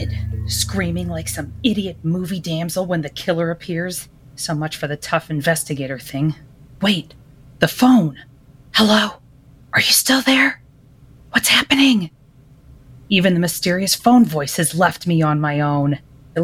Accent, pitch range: American, 145-185 Hz